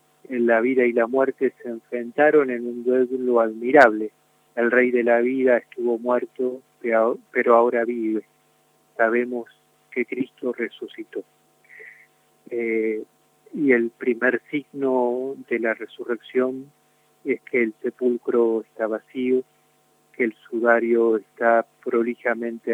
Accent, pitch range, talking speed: Argentinian, 115-145 Hz, 120 wpm